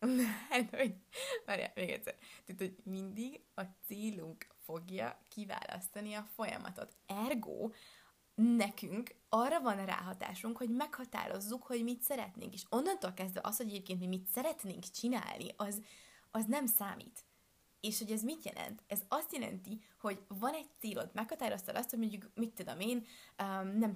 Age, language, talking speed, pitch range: 20-39, Hungarian, 140 wpm, 195-240 Hz